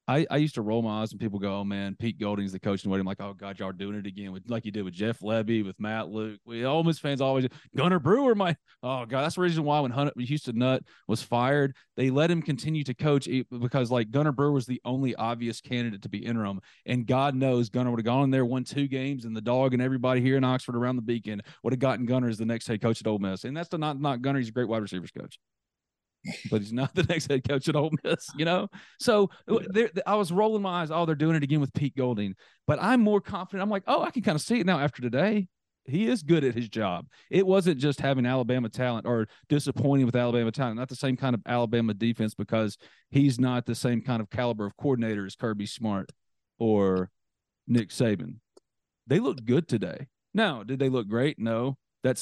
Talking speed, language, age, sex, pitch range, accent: 250 wpm, English, 30-49, male, 115-145 Hz, American